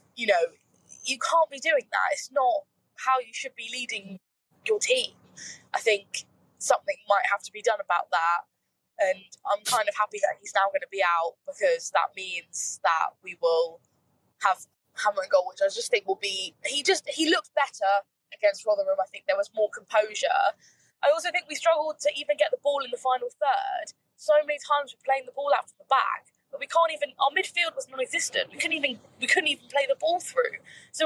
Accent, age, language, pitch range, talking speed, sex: British, 10-29, English, 260-335 Hz, 215 wpm, female